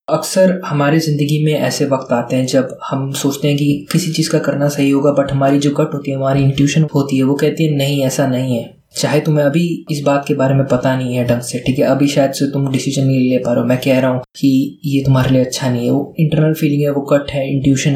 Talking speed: 265 wpm